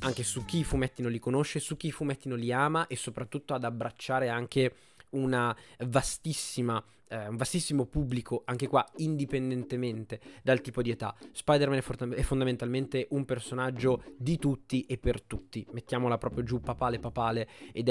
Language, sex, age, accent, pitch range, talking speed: Italian, male, 20-39, native, 120-135 Hz, 165 wpm